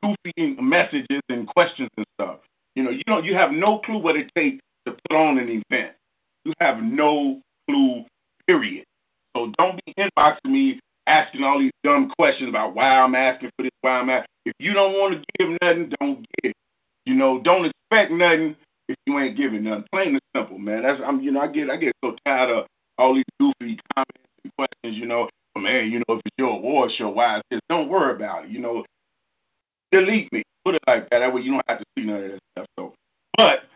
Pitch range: 120-185 Hz